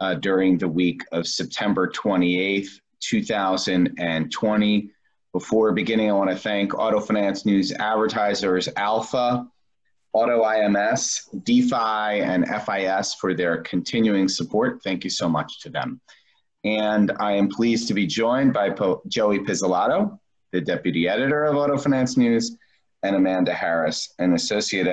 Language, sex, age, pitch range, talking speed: English, male, 30-49, 95-125 Hz, 130 wpm